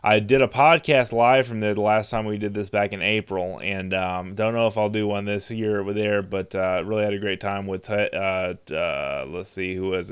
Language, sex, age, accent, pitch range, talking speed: English, male, 20-39, American, 95-110 Hz, 250 wpm